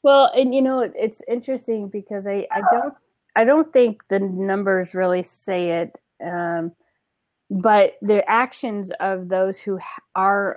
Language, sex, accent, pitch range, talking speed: English, female, American, 180-225 Hz, 150 wpm